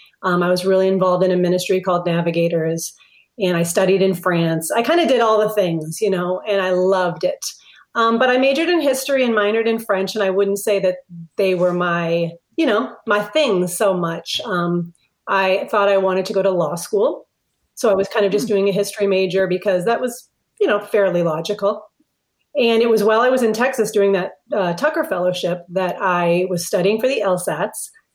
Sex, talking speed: female, 210 wpm